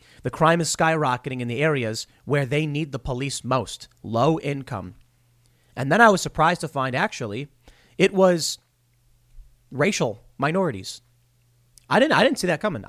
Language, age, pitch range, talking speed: English, 30-49, 120-180 Hz, 160 wpm